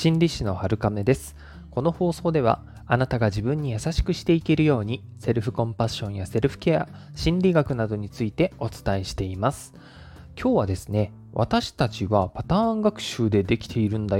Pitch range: 105-160 Hz